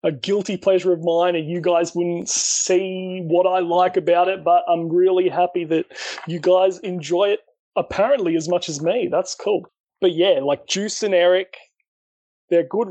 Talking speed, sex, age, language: 180 wpm, male, 30-49, English